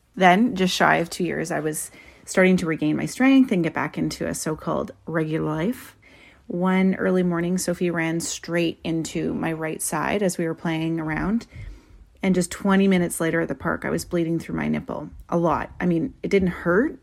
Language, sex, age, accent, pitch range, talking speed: English, female, 30-49, American, 160-190 Hz, 200 wpm